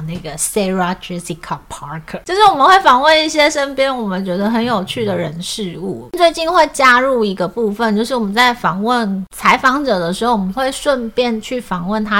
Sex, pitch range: female, 185-255 Hz